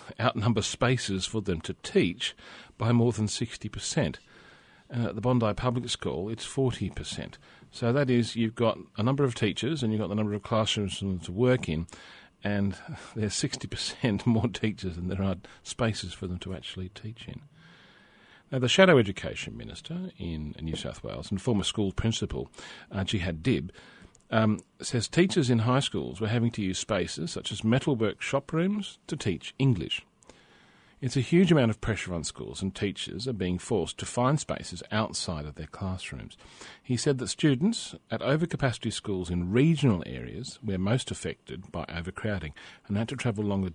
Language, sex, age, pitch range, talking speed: English, male, 40-59, 95-125 Hz, 175 wpm